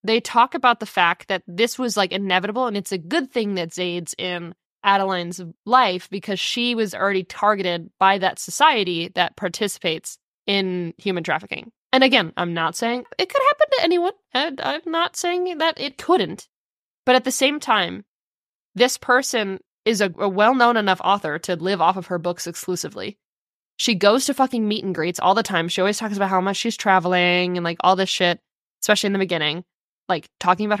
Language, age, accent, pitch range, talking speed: English, 20-39, American, 180-240 Hz, 190 wpm